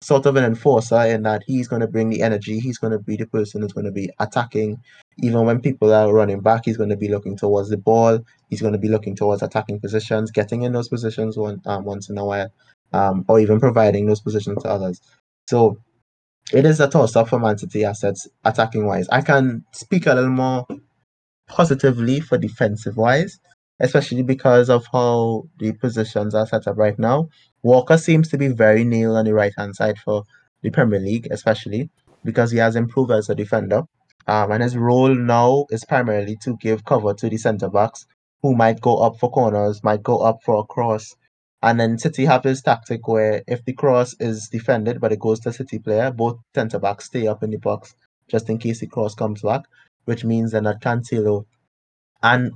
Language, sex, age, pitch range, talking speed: English, male, 20-39, 105-125 Hz, 200 wpm